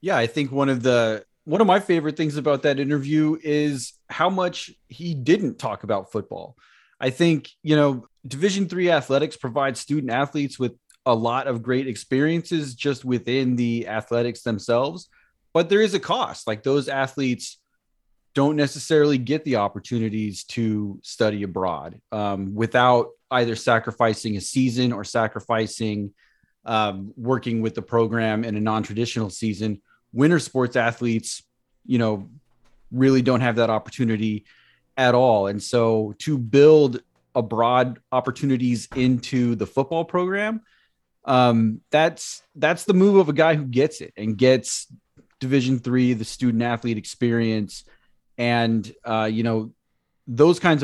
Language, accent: English, American